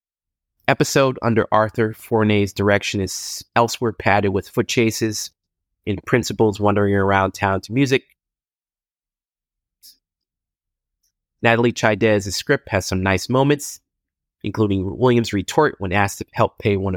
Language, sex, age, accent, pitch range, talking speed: English, male, 30-49, American, 95-120 Hz, 120 wpm